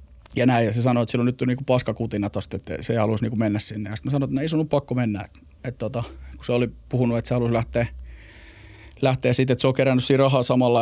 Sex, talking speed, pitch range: male, 265 wpm, 105-125 Hz